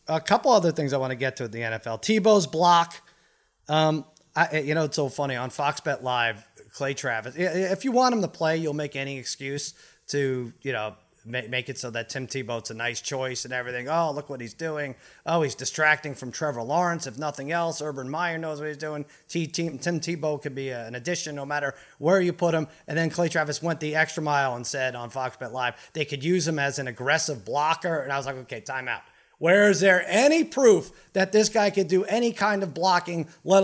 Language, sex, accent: English, male, American